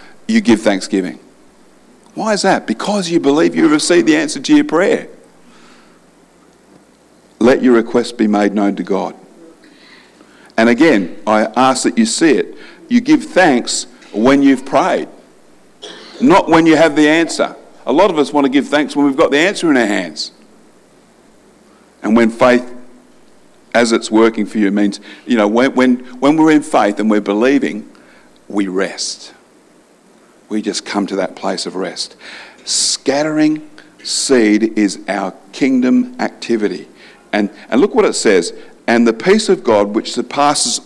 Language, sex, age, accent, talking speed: English, male, 50-69, Australian, 160 wpm